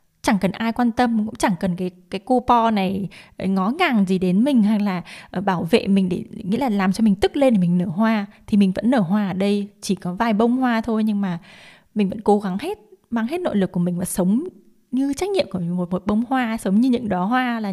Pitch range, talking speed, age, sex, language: 185-230 Hz, 255 wpm, 20-39, female, Vietnamese